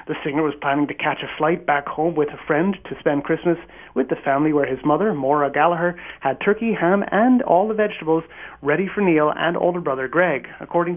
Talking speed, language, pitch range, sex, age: 215 wpm, English, 150-190 Hz, male, 30-49